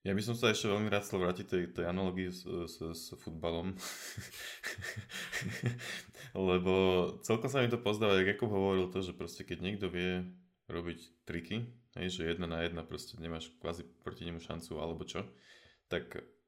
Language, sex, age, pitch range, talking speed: Slovak, male, 20-39, 90-100 Hz, 165 wpm